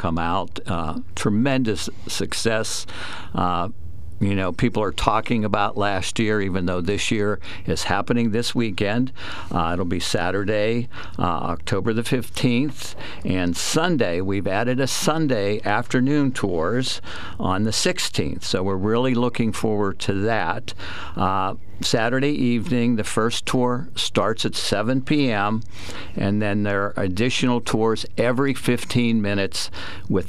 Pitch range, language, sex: 95-120 Hz, English, male